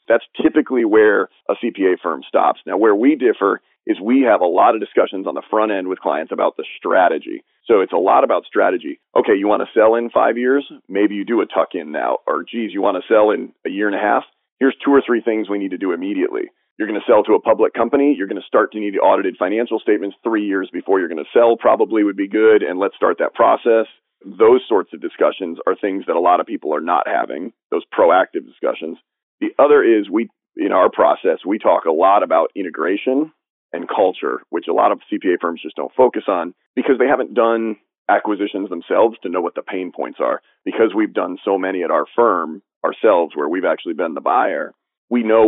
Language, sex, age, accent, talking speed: English, male, 40-59, American, 230 wpm